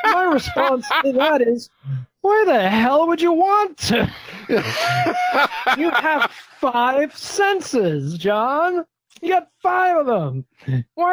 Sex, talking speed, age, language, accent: male, 125 wpm, 40-59, English, American